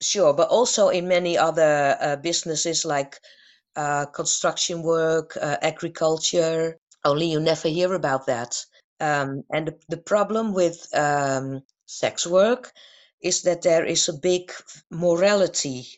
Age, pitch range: 50-69, 165-210 Hz